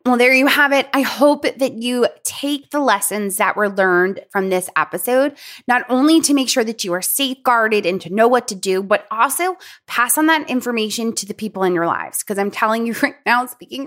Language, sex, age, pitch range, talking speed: English, female, 20-39, 220-285 Hz, 225 wpm